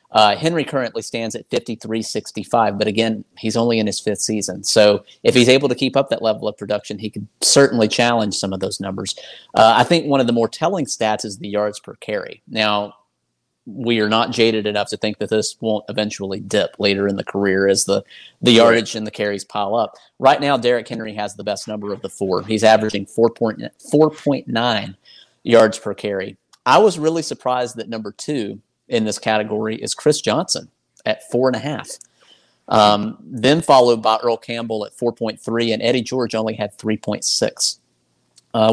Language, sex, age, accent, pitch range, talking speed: English, male, 30-49, American, 105-125 Hz, 195 wpm